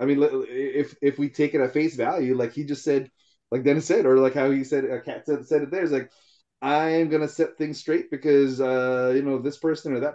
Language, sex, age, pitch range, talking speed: English, male, 20-39, 130-165 Hz, 260 wpm